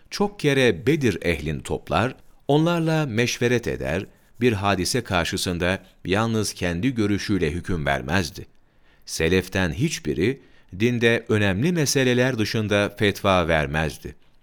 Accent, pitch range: native, 85-120 Hz